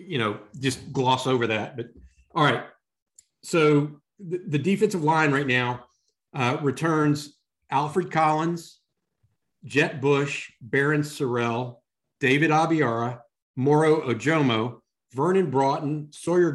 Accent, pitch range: American, 125-165 Hz